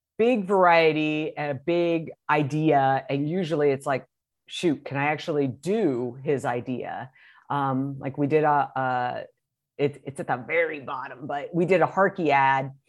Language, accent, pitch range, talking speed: English, American, 140-170 Hz, 160 wpm